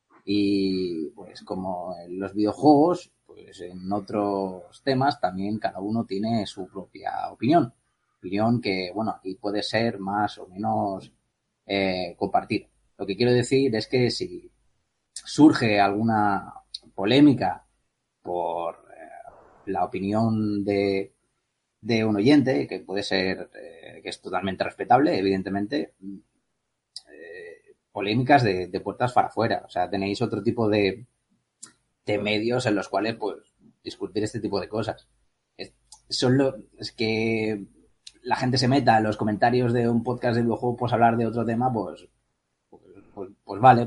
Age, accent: 30-49, Spanish